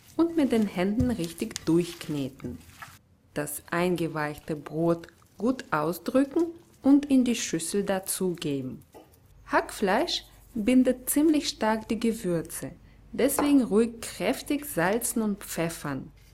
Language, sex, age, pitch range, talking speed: German, female, 20-39, 160-245 Hz, 105 wpm